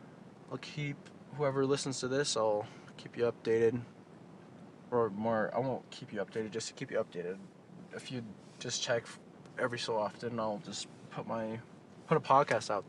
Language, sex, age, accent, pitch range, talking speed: English, male, 20-39, American, 115-170 Hz, 170 wpm